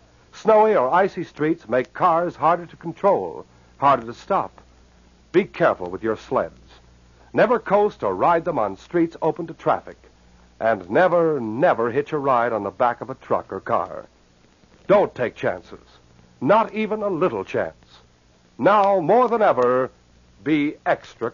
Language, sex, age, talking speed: English, male, 60-79, 155 wpm